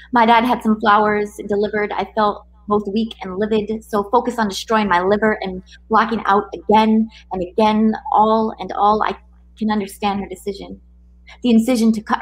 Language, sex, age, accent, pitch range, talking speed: English, female, 20-39, American, 195-225 Hz, 175 wpm